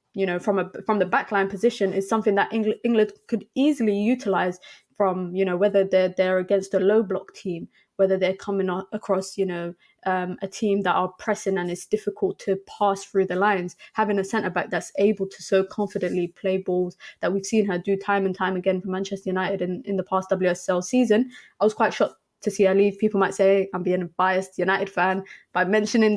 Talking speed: 220 wpm